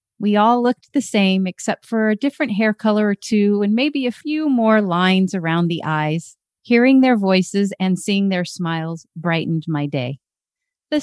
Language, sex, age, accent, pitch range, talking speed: English, female, 40-59, American, 170-230 Hz, 180 wpm